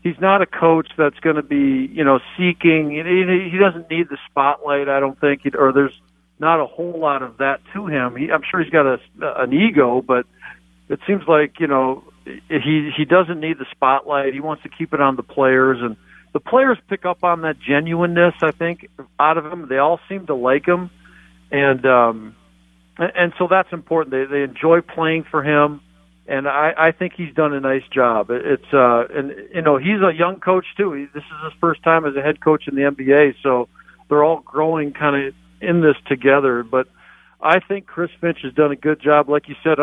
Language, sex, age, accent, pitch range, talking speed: English, male, 50-69, American, 135-170 Hz, 210 wpm